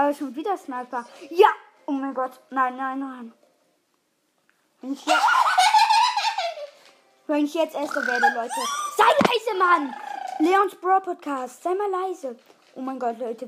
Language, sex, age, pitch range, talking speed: German, female, 20-39, 240-295 Hz, 130 wpm